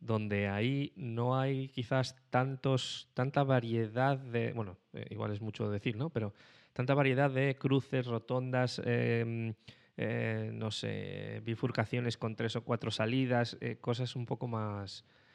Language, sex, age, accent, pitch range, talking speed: Spanish, male, 20-39, Spanish, 110-130 Hz, 145 wpm